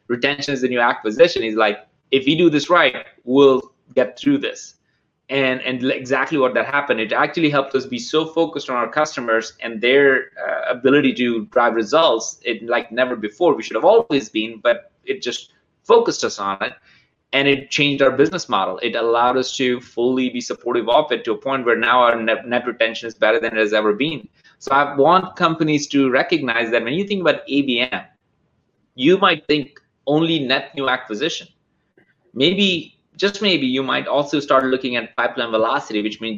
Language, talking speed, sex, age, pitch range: Finnish, 195 wpm, male, 20-39, 120-145 Hz